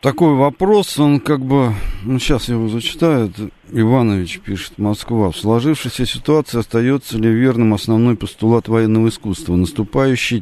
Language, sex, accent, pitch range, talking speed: Russian, male, native, 95-120 Hz, 145 wpm